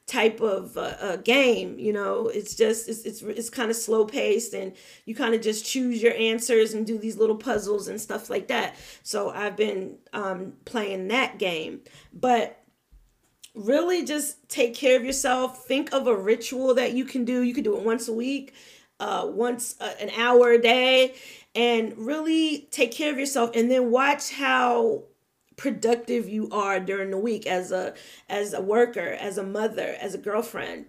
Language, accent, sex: English, American, female